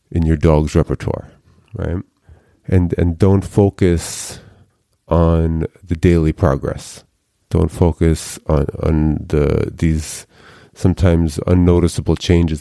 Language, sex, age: English, male, 30-49